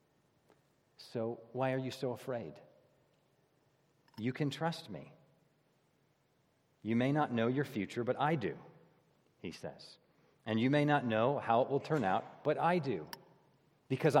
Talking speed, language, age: 150 wpm, English, 40-59